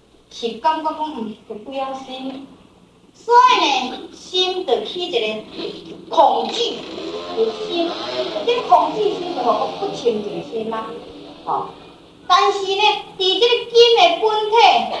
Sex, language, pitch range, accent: female, Chinese, 295-400 Hz, American